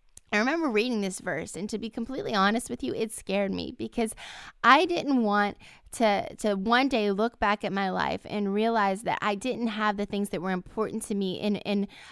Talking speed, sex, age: 215 wpm, female, 10-29